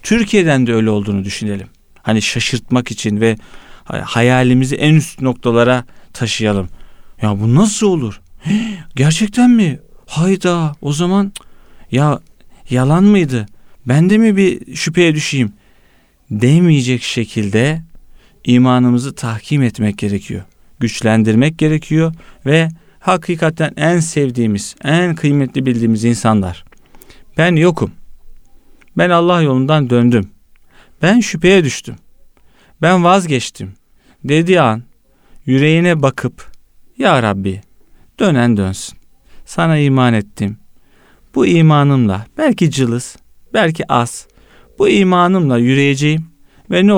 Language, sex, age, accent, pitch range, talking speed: Turkish, male, 40-59, native, 115-165 Hz, 105 wpm